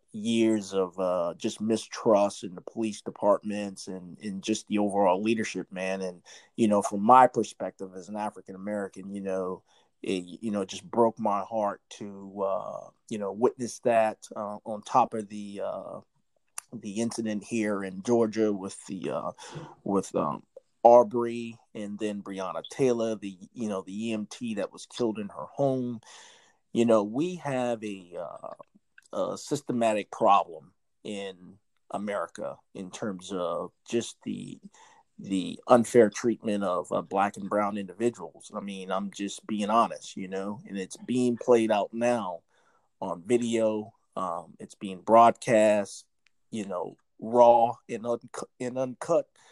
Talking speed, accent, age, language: 150 wpm, American, 30-49, English